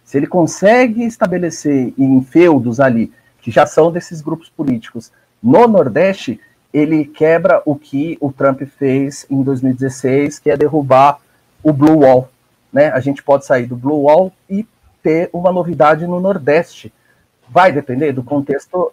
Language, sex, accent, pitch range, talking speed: Portuguese, male, Brazilian, 135-180 Hz, 150 wpm